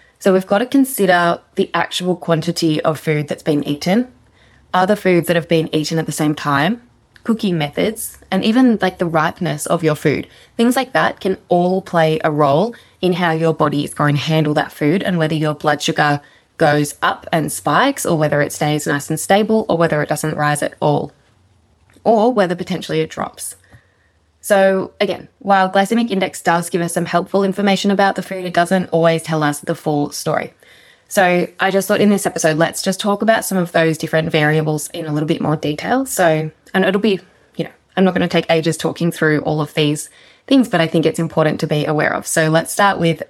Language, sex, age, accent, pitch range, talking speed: English, female, 20-39, Australian, 155-190 Hz, 215 wpm